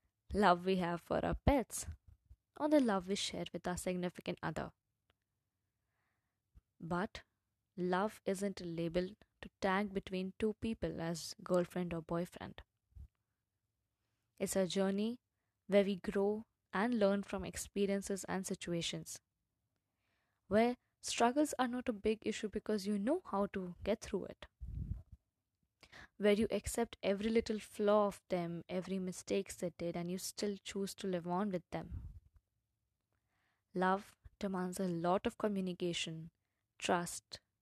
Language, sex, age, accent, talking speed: English, female, 20-39, Indian, 135 wpm